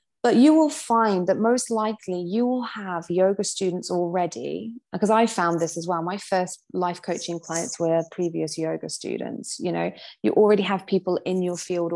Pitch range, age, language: 170-210 Hz, 20-39, English